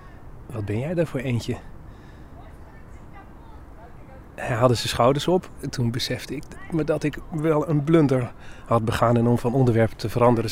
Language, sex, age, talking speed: Dutch, male, 40-59, 160 wpm